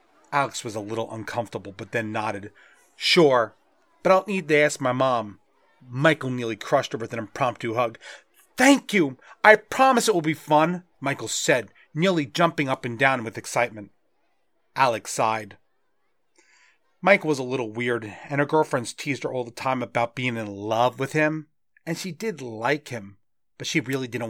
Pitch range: 115-150 Hz